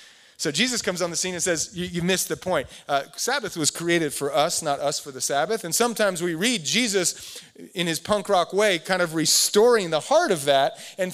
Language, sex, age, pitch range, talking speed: English, male, 30-49, 145-185 Hz, 225 wpm